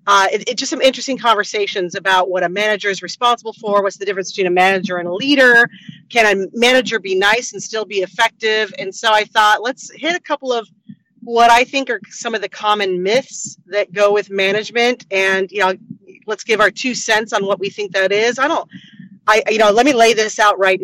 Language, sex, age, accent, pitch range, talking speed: English, female, 30-49, American, 190-230 Hz, 225 wpm